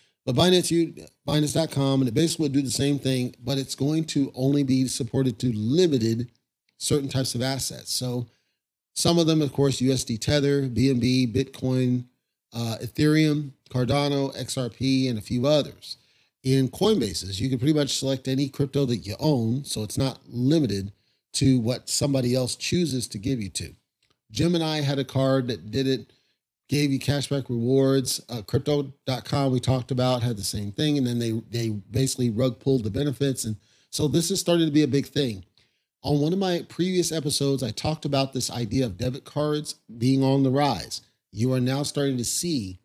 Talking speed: 185 wpm